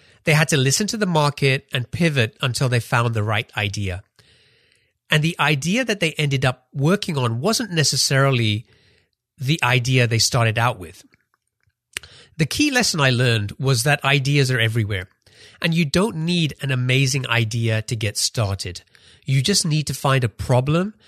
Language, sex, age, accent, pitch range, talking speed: English, male, 30-49, British, 110-155 Hz, 170 wpm